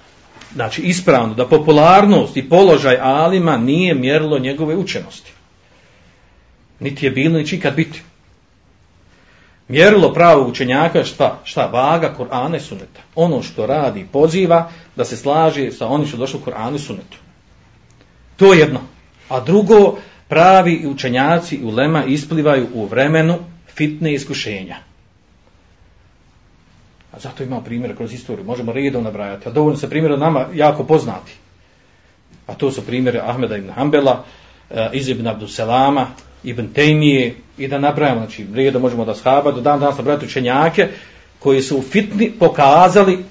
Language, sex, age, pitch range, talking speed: Croatian, male, 40-59, 115-155 Hz, 135 wpm